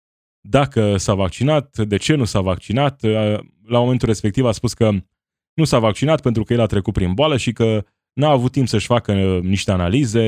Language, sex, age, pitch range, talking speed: Romanian, male, 20-39, 95-120 Hz, 195 wpm